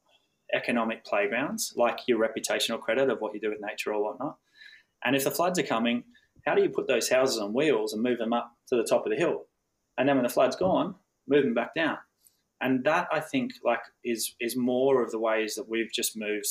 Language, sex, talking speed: English, male, 230 wpm